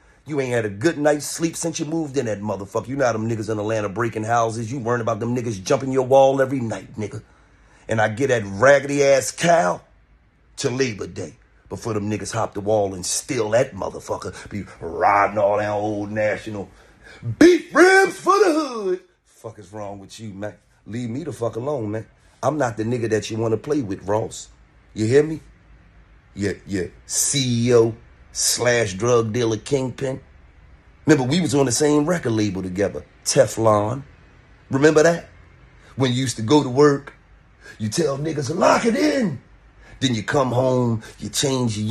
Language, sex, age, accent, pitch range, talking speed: English, male, 40-59, American, 110-140 Hz, 185 wpm